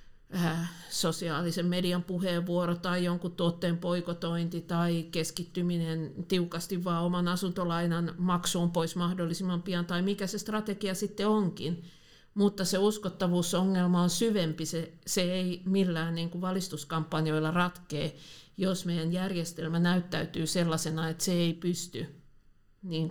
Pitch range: 160-185 Hz